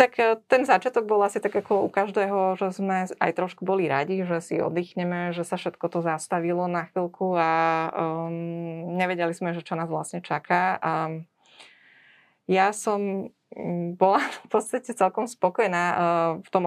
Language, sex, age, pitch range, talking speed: Slovak, female, 20-39, 170-195 Hz, 150 wpm